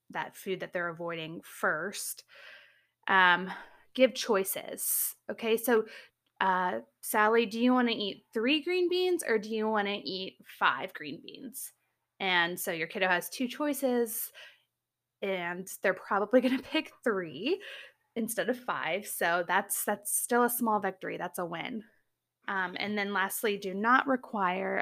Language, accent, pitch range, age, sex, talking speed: English, American, 190-235 Hz, 20-39, female, 145 wpm